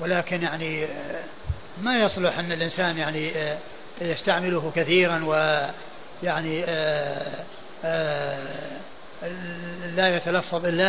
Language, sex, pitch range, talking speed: Arabic, male, 170-185 Hz, 70 wpm